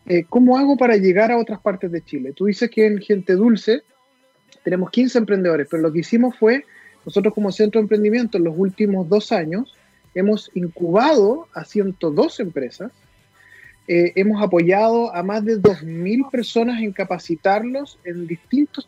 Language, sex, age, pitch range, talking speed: Spanish, male, 30-49, 180-235 Hz, 160 wpm